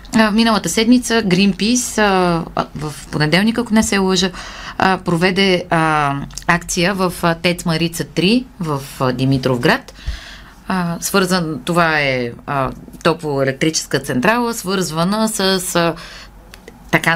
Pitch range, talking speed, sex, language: 155-195 Hz, 115 wpm, female, Bulgarian